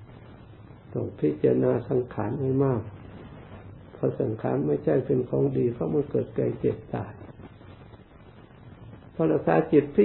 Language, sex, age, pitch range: Thai, male, 60-79, 120-155 Hz